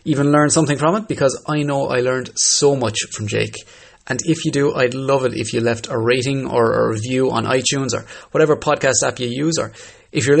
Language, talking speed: English, 230 wpm